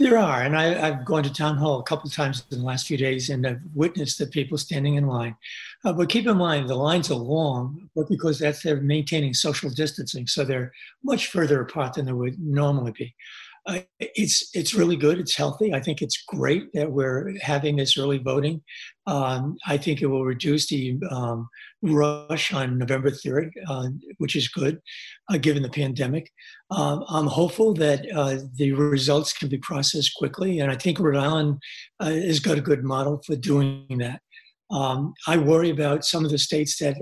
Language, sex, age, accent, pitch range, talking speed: English, male, 60-79, American, 135-155 Hz, 195 wpm